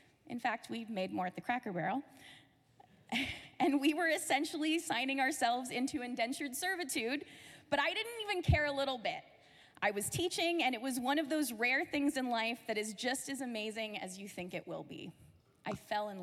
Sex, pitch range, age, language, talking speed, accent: female, 210-295 Hz, 20-39, English, 200 wpm, American